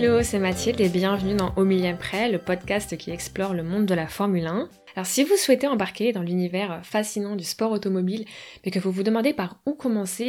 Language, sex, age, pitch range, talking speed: French, female, 20-39, 185-220 Hz, 220 wpm